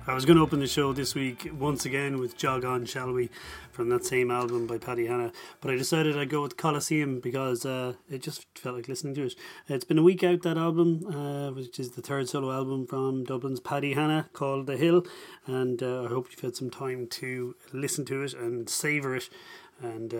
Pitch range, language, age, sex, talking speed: 125-160 Hz, English, 30-49, male, 225 wpm